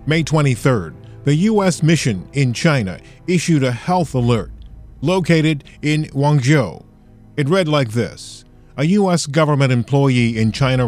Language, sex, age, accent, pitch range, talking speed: English, male, 40-59, American, 115-145 Hz, 130 wpm